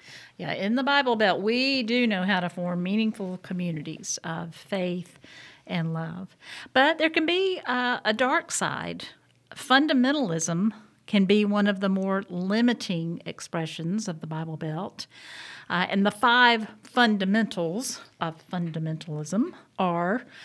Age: 50-69